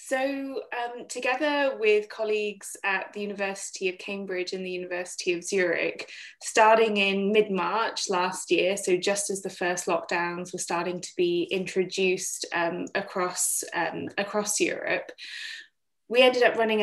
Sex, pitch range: female, 180-245 Hz